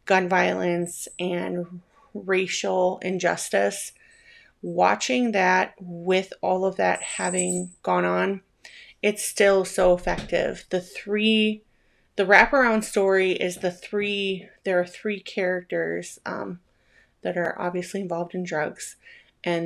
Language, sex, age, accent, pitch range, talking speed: English, female, 30-49, American, 175-195 Hz, 115 wpm